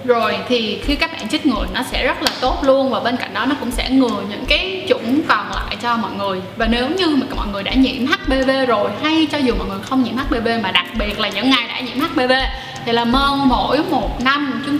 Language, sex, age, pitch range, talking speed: Vietnamese, female, 10-29, 230-265 Hz, 250 wpm